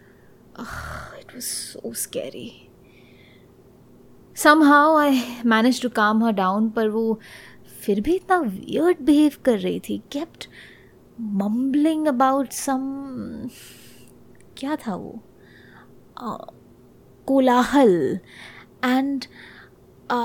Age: 20-39